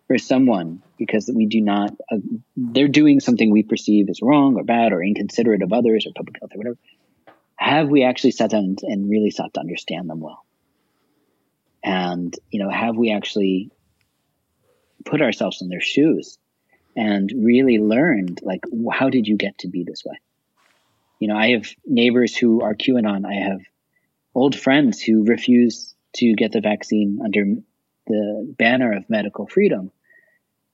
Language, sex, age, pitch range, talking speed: English, male, 30-49, 105-135 Hz, 165 wpm